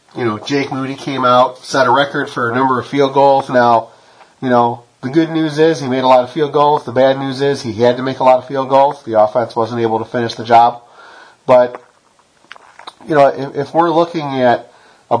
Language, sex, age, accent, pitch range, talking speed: English, male, 40-59, American, 115-135 Hz, 230 wpm